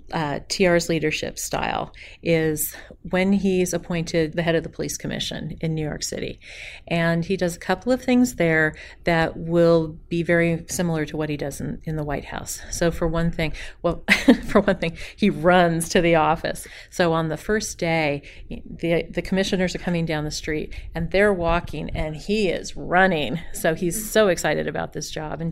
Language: English